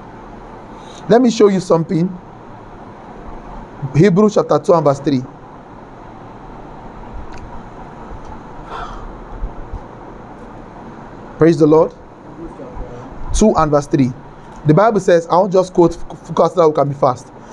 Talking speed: 105 wpm